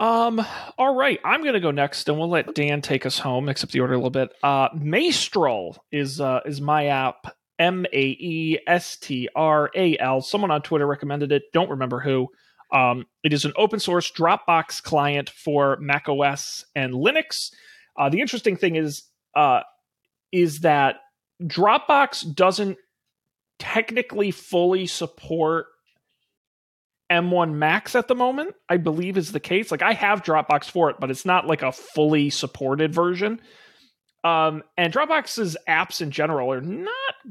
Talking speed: 165 wpm